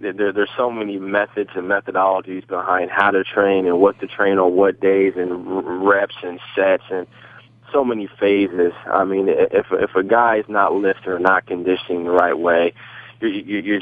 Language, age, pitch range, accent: English, 20-39, 90-105 Hz, American